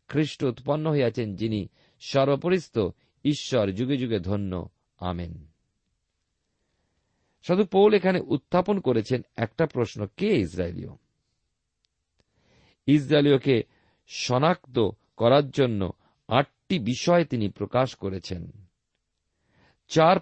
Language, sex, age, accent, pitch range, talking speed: Bengali, male, 50-69, native, 105-150 Hz, 75 wpm